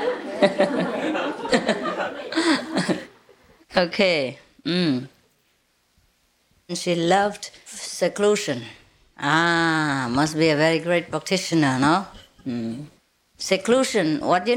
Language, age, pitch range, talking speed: English, 30-49, 140-185 Hz, 75 wpm